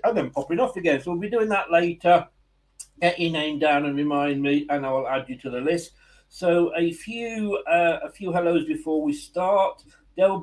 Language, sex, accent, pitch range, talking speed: English, male, British, 145-180 Hz, 215 wpm